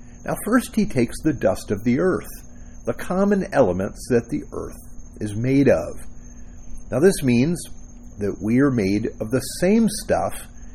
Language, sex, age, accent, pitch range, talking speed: English, male, 50-69, American, 100-145 Hz, 160 wpm